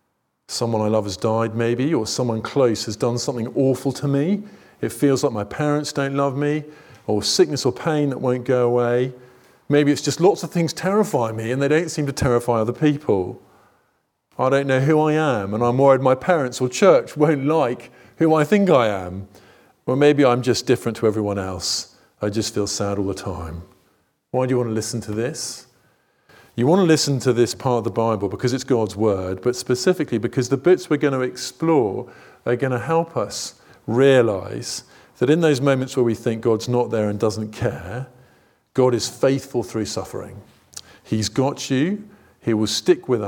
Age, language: 40-59, English